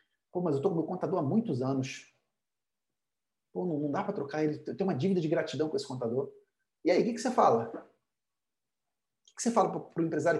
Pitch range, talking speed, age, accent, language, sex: 145-205 Hz, 240 wpm, 40-59, Brazilian, Portuguese, male